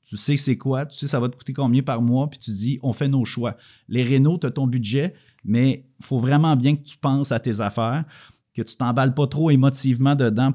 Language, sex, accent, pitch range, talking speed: French, male, Canadian, 110-135 Hz, 255 wpm